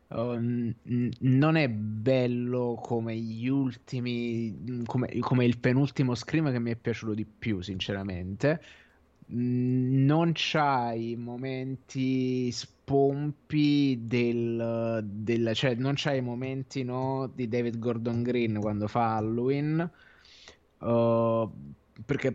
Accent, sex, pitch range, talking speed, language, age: native, male, 115-135 Hz, 105 wpm, Italian, 20-39